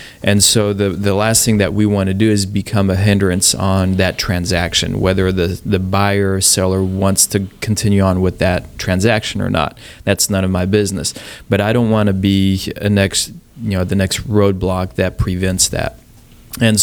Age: 20-39